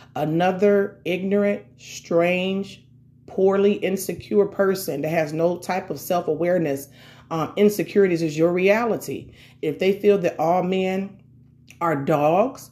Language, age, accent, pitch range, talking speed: English, 40-59, American, 145-185 Hz, 120 wpm